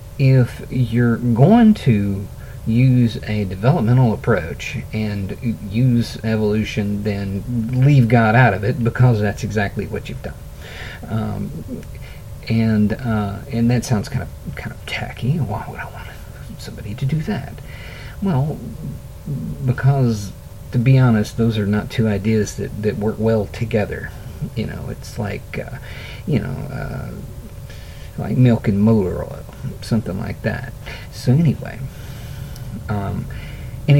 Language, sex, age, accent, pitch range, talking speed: English, male, 50-69, American, 105-130 Hz, 135 wpm